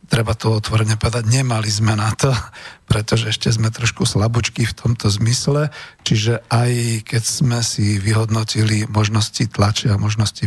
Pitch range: 110-135 Hz